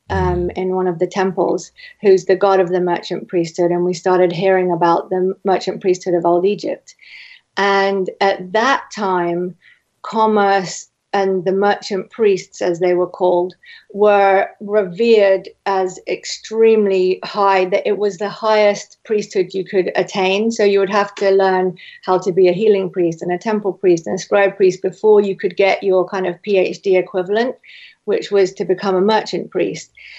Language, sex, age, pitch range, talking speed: English, female, 40-59, 185-210 Hz, 175 wpm